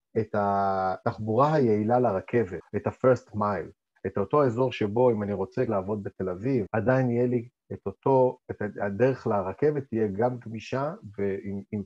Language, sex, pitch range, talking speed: Hebrew, male, 105-130 Hz, 145 wpm